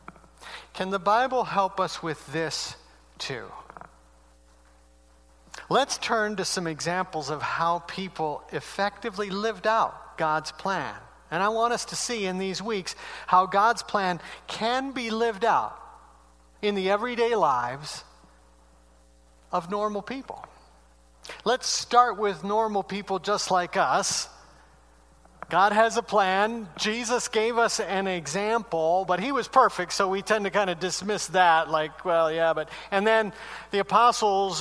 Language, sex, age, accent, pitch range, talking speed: English, male, 50-69, American, 145-210 Hz, 140 wpm